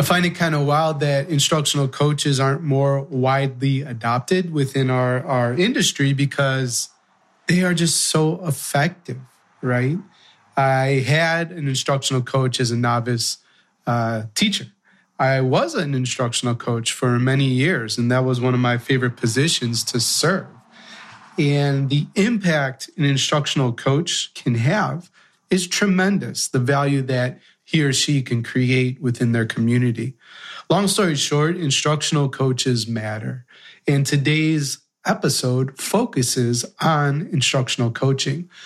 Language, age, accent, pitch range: English, 30-49, American, 125-155 Hz